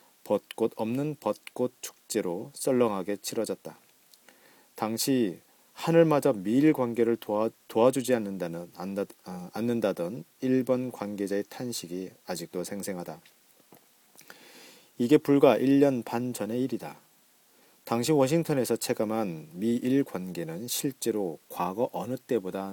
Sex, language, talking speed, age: male, English, 90 wpm, 40-59